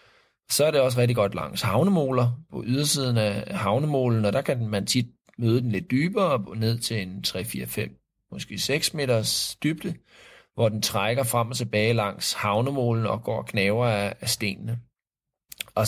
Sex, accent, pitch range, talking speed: male, native, 105-125 Hz, 165 wpm